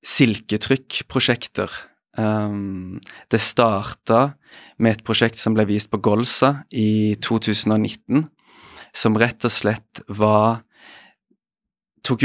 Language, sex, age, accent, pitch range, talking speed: English, male, 30-49, Swedish, 110-125 Hz, 100 wpm